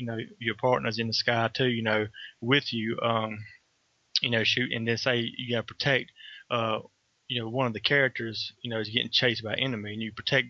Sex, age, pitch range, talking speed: male, 20-39, 115-125 Hz, 235 wpm